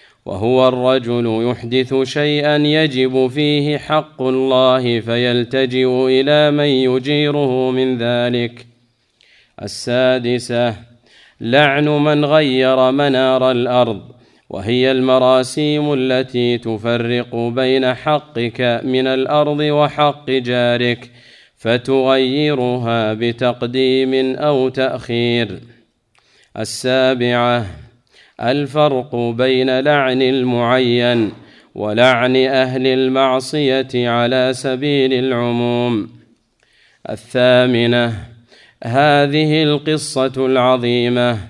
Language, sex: Arabic, male